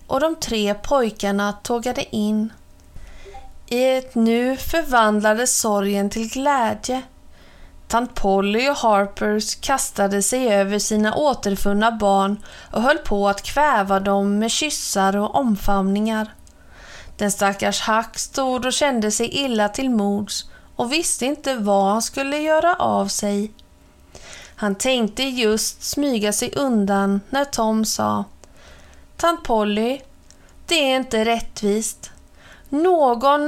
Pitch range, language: 210-275 Hz, Swedish